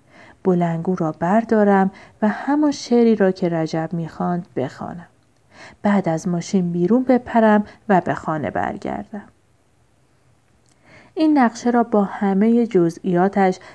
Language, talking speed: Persian, 115 wpm